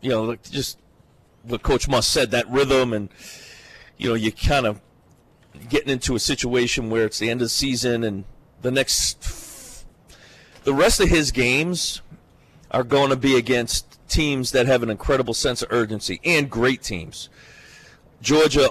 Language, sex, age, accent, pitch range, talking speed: English, male, 40-59, American, 115-145 Hz, 165 wpm